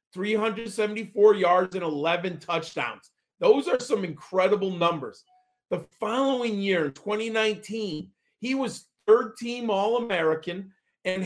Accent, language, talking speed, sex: American, English, 105 wpm, male